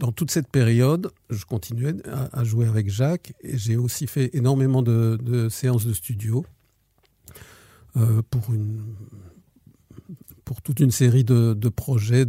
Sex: male